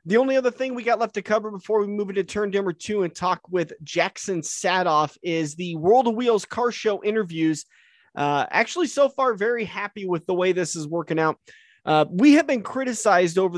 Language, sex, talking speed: English, male, 210 wpm